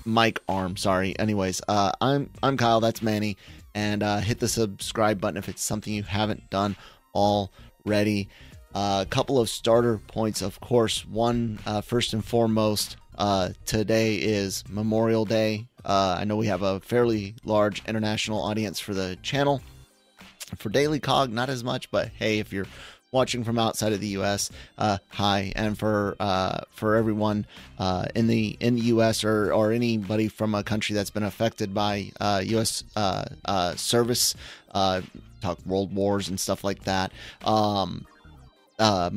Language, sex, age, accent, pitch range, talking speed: English, male, 30-49, American, 95-110 Hz, 165 wpm